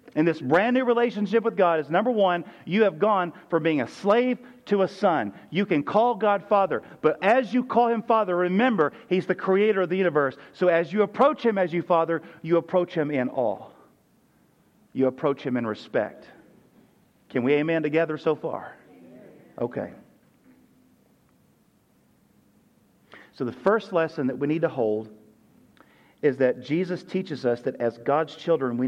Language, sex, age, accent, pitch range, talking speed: English, male, 40-59, American, 130-185 Hz, 170 wpm